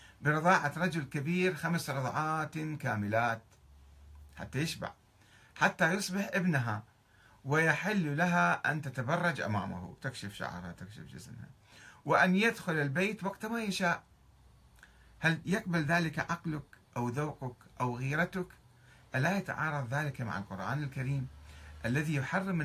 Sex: male